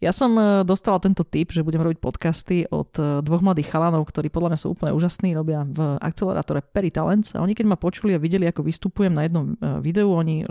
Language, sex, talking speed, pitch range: Slovak, female, 205 wpm, 160-205 Hz